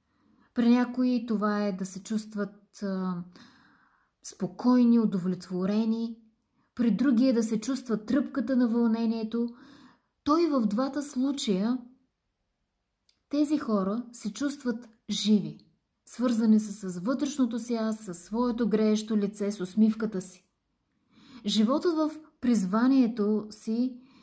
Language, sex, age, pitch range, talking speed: Bulgarian, female, 20-39, 205-240 Hz, 110 wpm